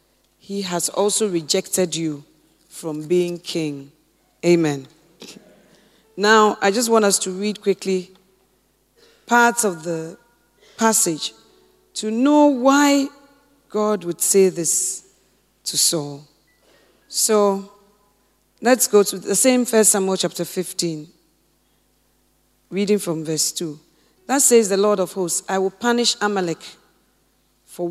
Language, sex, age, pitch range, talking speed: English, female, 40-59, 175-215 Hz, 120 wpm